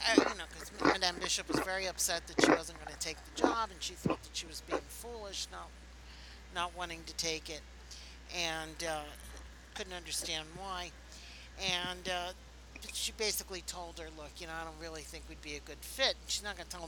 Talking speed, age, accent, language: 210 wpm, 60-79, American, English